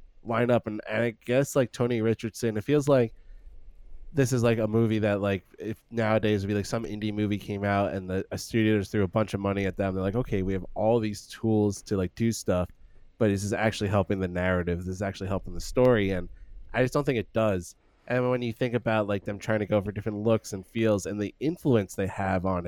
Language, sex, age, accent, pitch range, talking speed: English, male, 20-39, American, 100-120 Hz, 245 wpm